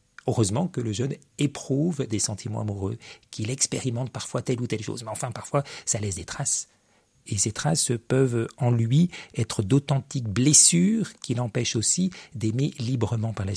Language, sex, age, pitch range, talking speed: French, male, 50-69, 110-145 Hz, 170 wpm